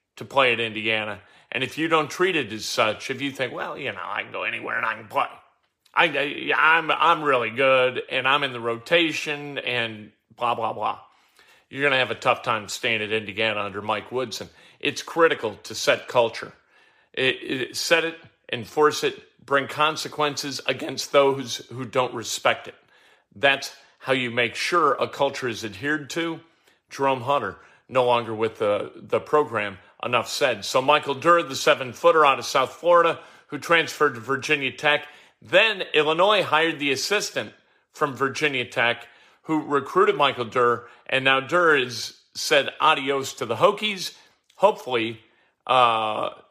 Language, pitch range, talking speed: English, 120-150 Hz, 170 wpm